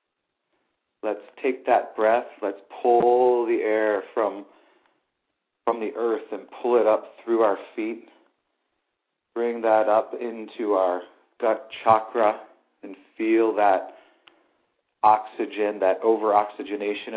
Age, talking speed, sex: 40-59, 110 wpm, male